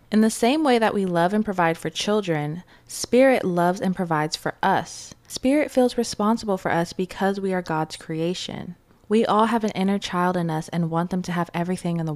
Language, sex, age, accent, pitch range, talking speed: English, female, 20-39, American, 165-210 Hz, 210 wpm